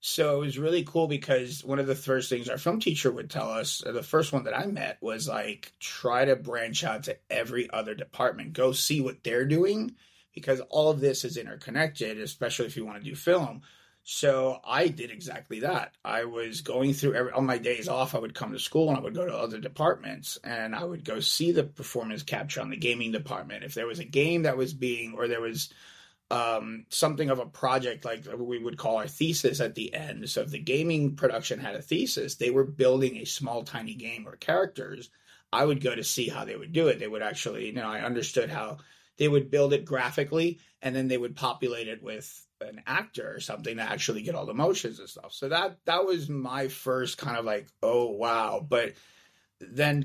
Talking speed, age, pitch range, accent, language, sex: 225 wpm, 30-49, 120-155 Hz, American, English, male